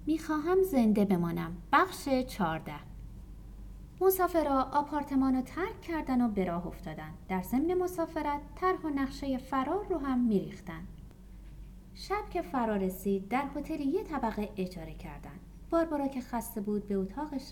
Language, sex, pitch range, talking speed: Persian, female, 185-290 Hz, 135 wpm